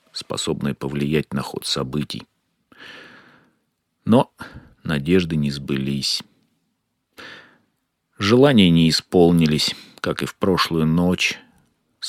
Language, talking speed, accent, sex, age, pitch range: Russian, 85 wpm, native, male, 40-59, 75-95 Hz